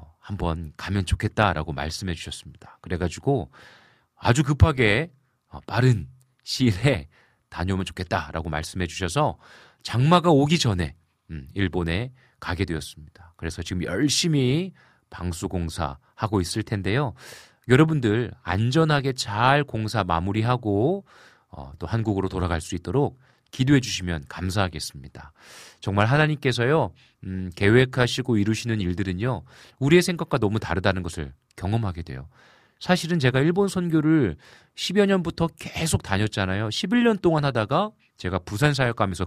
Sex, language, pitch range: male, Korean, 90-140 Hz